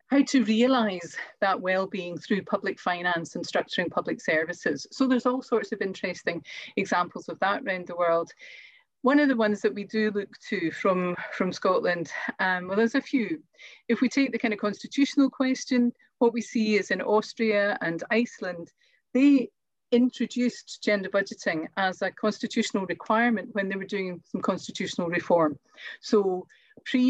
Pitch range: 185-240 Hz